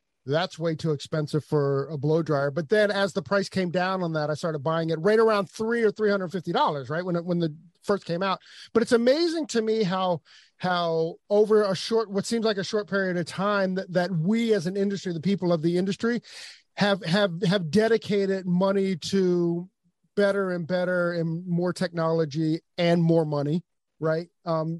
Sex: male